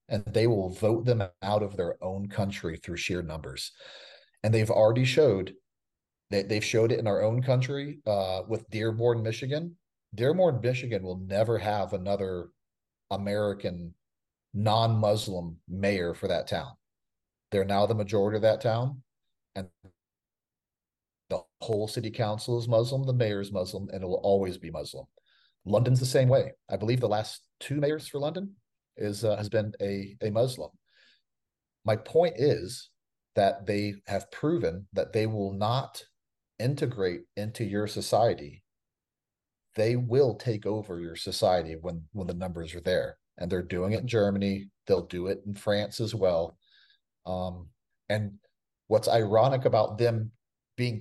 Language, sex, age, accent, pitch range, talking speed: English, male, 40-59, American, 95-120 Hz, 155 wpm